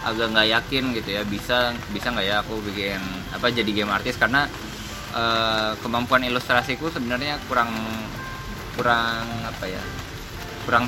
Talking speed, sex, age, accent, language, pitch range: 140 wpm, male, 20-39, native, Indonesian, 100-120 Hz